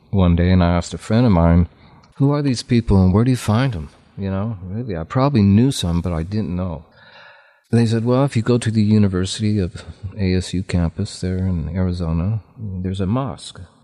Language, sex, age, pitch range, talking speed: English, male, 50-69, 90-115 Hz, 215 wpm